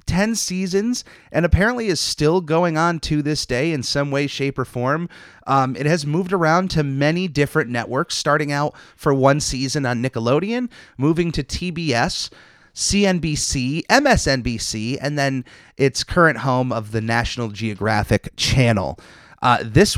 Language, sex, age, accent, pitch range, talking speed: English, male, 30-49, American, 115-160 Hz, 150 wpm